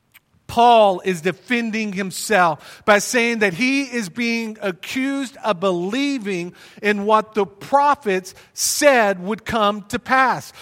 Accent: American